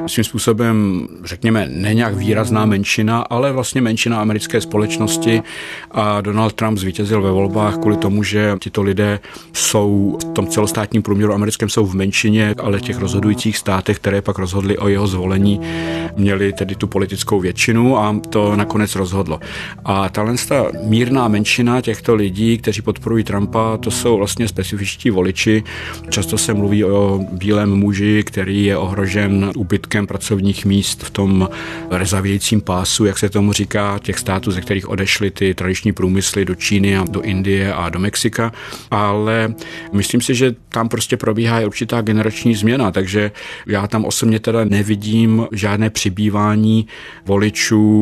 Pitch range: 100-110 Hz